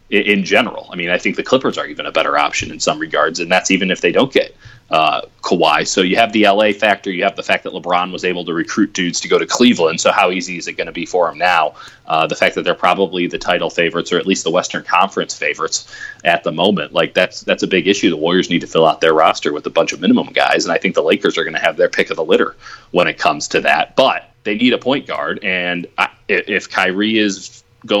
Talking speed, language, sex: 270 wpm, English, male